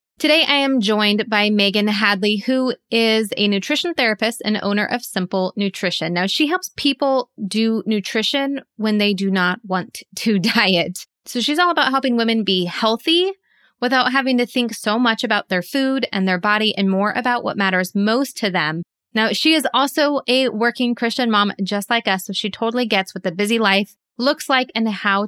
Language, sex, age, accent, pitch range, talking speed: English, female, 20-39, American, 200-250 Hz, 190 wpm